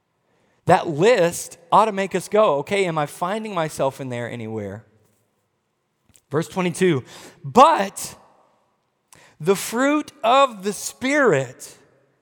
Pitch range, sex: 155-215 Hz, male